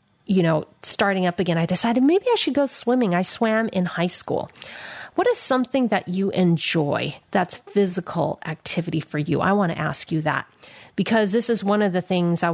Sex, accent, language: female, American, English